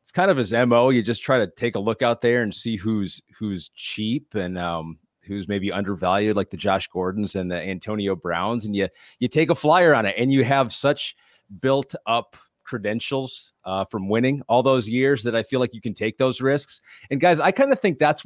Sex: male